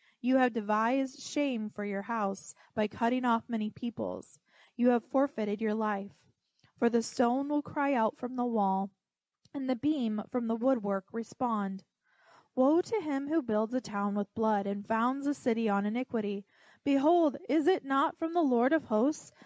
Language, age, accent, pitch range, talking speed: English, 20-39, American, 210-255 Hz, 175 wpm